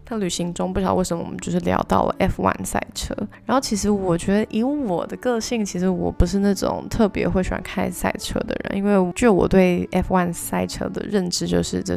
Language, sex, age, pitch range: Chinese, female, 20-39, 180-215 Hz